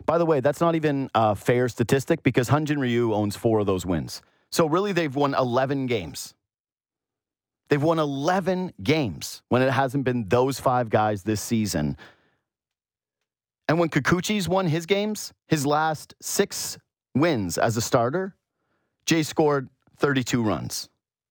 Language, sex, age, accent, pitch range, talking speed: English, male, 40-59, American, 110-145 Hz, 150 wpm